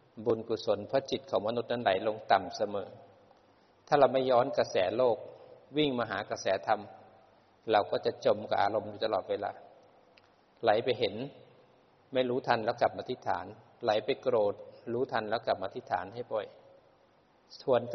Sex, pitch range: male, 110-140 Hz